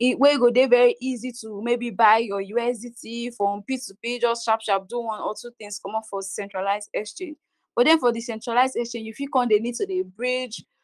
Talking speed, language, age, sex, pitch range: 215 wpm, English, 10-29, female, 215-275 Hz